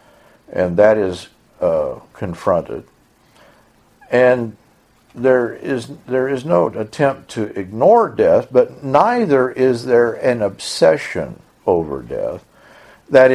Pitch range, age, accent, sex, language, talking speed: 90-125 Hz, 60-79, American, male, English, 110 wpm